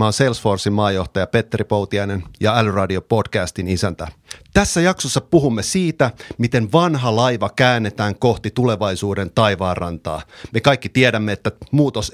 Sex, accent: male, native